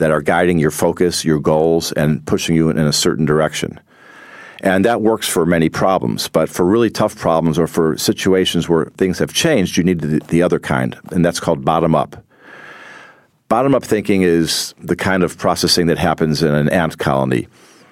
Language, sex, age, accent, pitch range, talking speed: English, male, 50-69, American, 80-95 Hz, 180 wpm